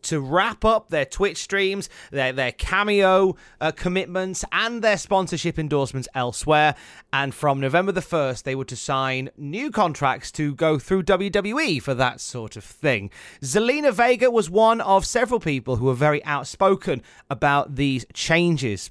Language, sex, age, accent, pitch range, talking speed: English, male, 30-49, British, 135-200 Hz, 160 wpm